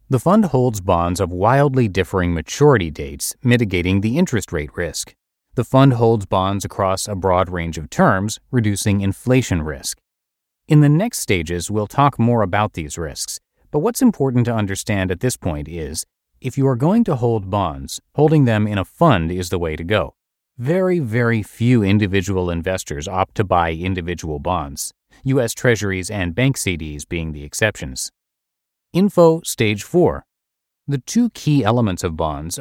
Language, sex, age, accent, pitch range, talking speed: English, male, 30-49, American, 90-130 Hz, 165 wpm